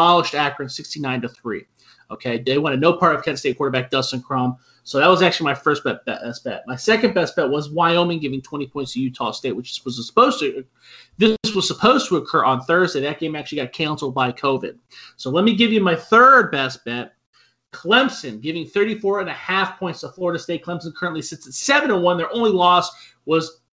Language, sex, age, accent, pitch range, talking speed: English, male, 30-49, American, 145-190 Hz, 210 wpm